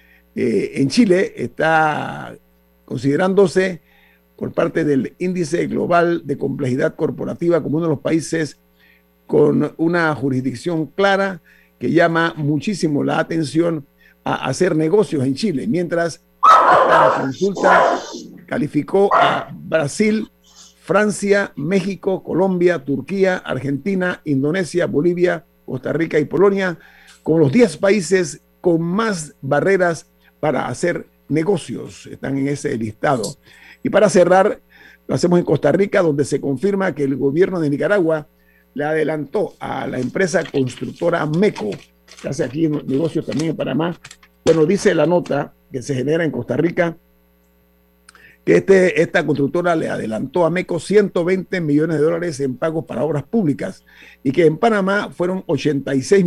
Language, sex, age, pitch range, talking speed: Spanish, male, 50-69, 140-185 Hz, 135 wpm